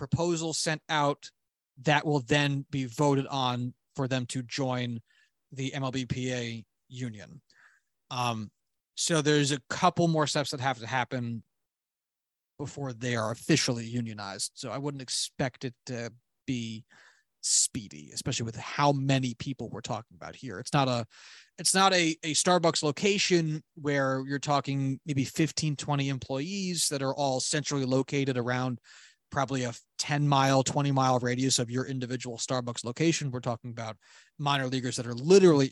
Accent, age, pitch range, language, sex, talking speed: American, 30-49, 125-150 Hz, English, male, 155 wpm